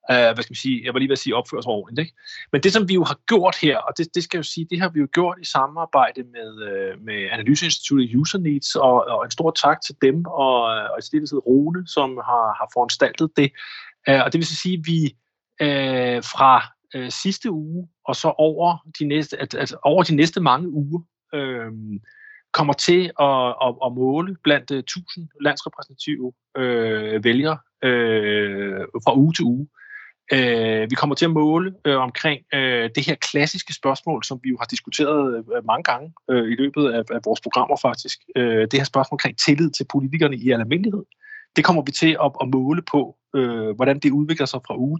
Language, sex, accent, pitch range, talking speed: Danish, male, native, 130-165 Hz, 190 wpm